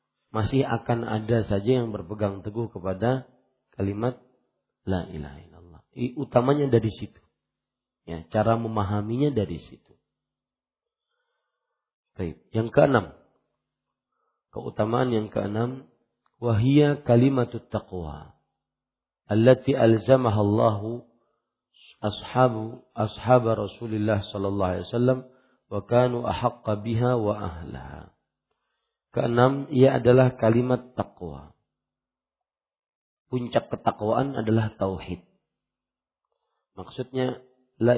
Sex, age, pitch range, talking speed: male, 50-69, 105-125 Hz, 85 wpm